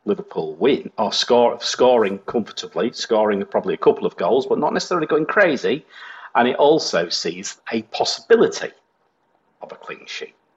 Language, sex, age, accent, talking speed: English, male, 40-59, British, 155 wpm